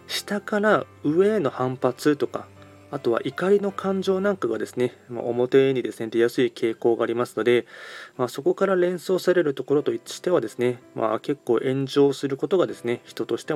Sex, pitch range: male, 120-180 Hz